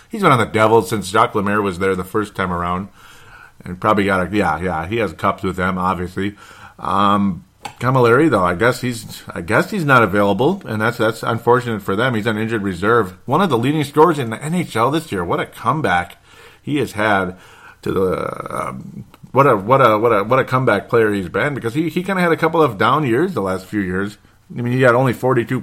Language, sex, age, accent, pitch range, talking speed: English, male, 40-59, American, 95-120 Hz, 230 wpm